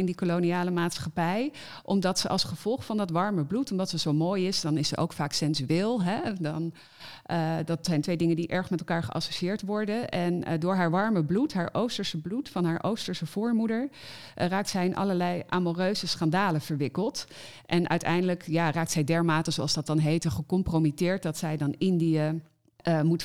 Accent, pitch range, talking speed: Dutch, 155-180 Hz, 190 wpm